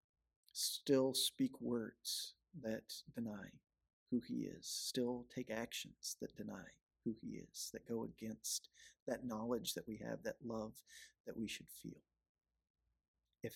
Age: 40-59